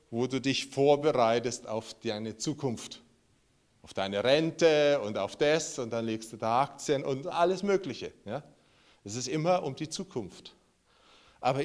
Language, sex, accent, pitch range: German, male, German, 115-155 Hz